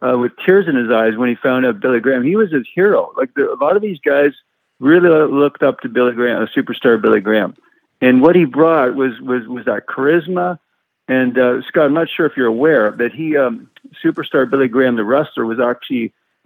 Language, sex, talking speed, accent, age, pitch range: English, male, 220 wpm, American, 50-69, 115-150 Hz